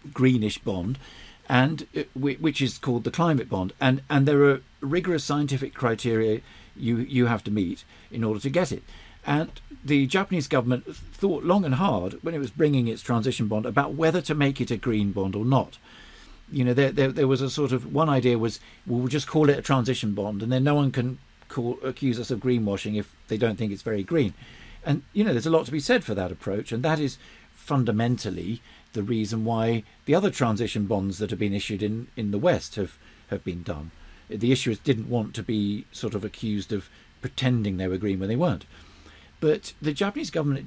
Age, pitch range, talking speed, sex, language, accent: 50-69, 105-140 Hz, 210 wpm, male, English, British